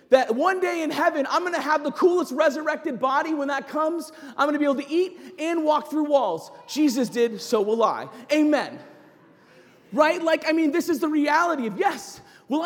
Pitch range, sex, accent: 275-340 Hz, male, American